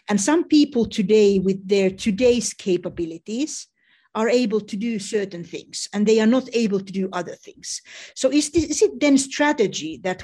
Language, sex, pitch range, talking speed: English, female, 190-245 Hz, 175 wpm